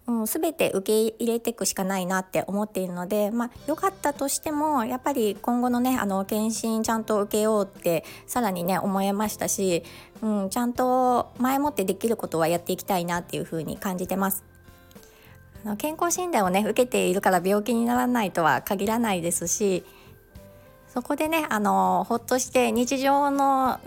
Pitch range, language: 190-245 Hz, Japanese